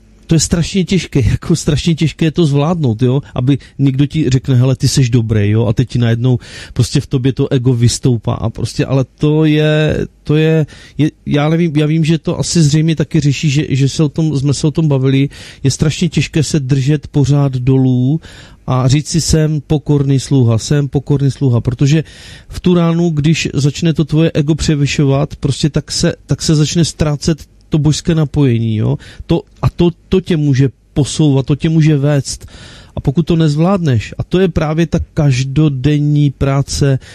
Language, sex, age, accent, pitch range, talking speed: Czech, male, 30-49, native, 130-155 Hz, 190 wpm